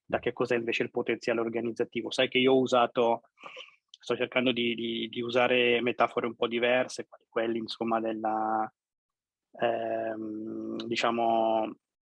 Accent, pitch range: native, 115-130 Hz